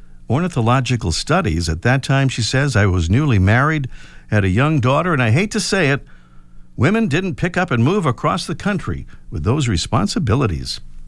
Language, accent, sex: English, American, male